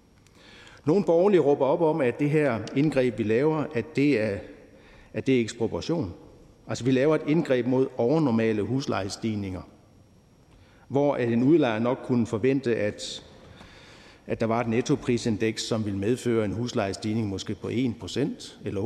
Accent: native